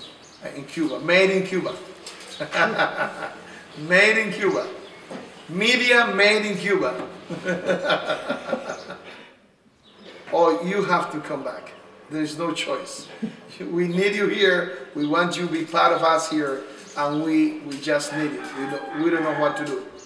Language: English